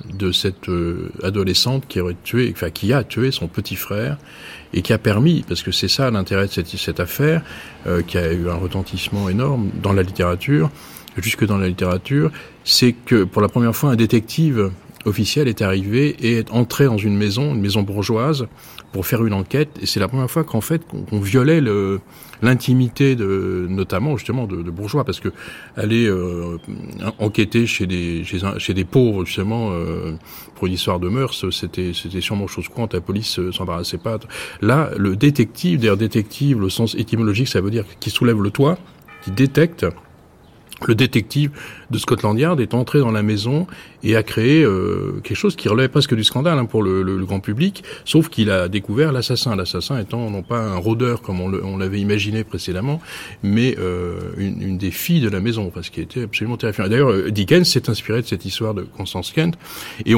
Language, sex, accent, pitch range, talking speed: French, male, French, 95-125 Hz, 200 wpm